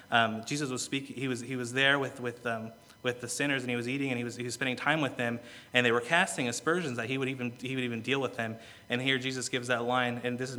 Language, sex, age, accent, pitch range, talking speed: English, male, 30-49, American, 120-130 Hz, 295 wpm